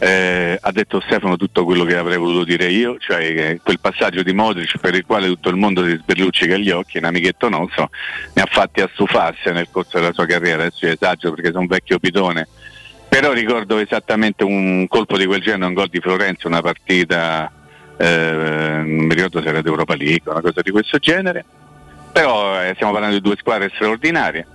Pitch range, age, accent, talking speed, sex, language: 85-100 Hz, 40-59, native, 200 wpm, male, Italian